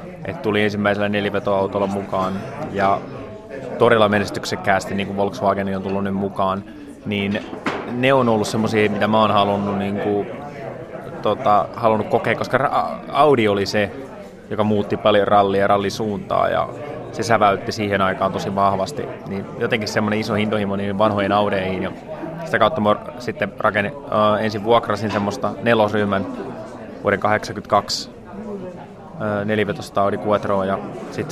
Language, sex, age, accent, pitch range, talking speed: Finnish, male, 20-39, native, 100-110 Hz, 130 wpm